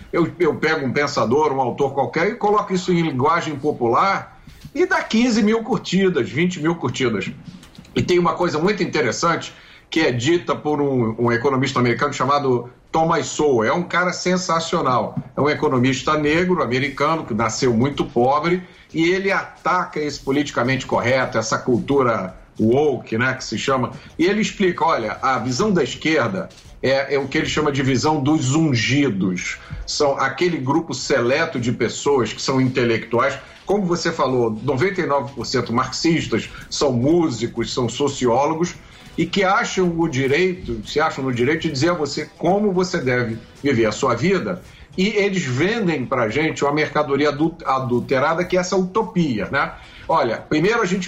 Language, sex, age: English, male, 50-69